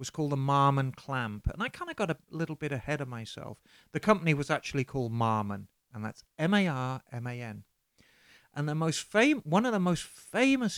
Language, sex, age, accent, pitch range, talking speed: English, male, 40-59, British, 125-170 Hz, 190 wpm